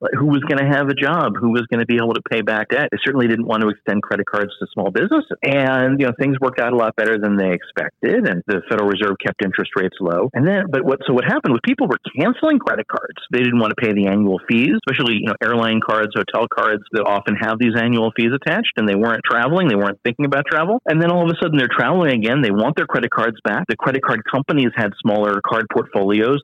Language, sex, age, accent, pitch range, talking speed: English, male, 40-59, American, 100-135 Hz, 260 wpm